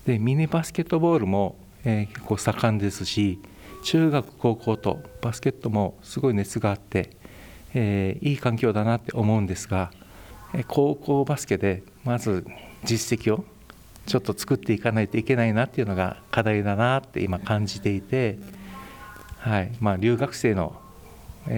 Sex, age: male, 60-79